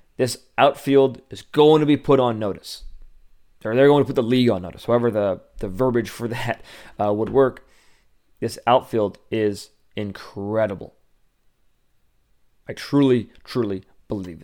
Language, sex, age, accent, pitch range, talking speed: English, male, 20-39, American, 105-135 Hz, 145 wpm